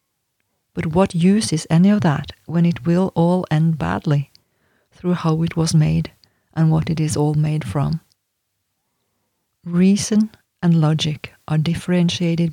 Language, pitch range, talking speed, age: English, 150-170 Hz, 145 wpm, 40-59